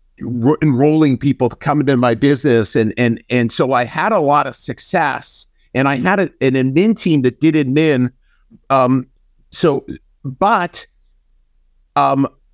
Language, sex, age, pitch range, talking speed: English, male, 50-69, 120-155 Hz, 150 wpm